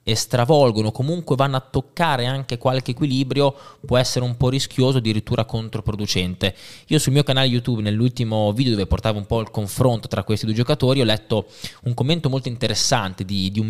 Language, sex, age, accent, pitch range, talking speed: Italian, male, 20-39, native, 105-130 Hz, 185 wpm